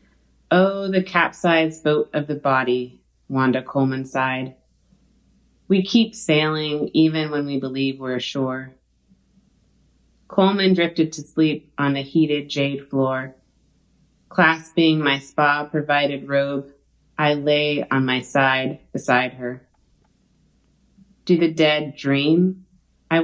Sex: female